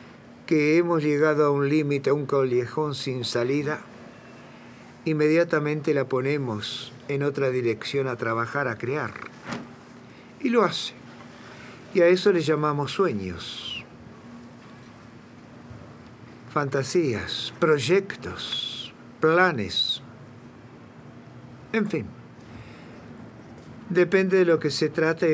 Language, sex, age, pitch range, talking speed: Spanish, male, 60-79, 120-155 Hz, 95 wpm